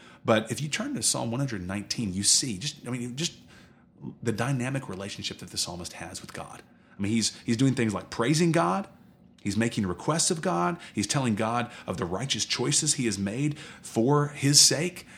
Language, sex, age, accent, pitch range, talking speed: English, male, 30-49, American, 100-135 Hz, 185 wpm